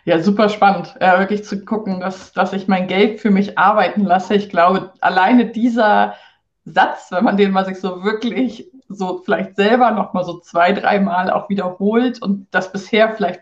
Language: German